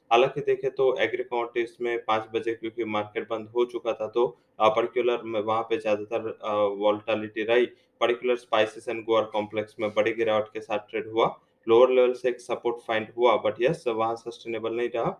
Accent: Indian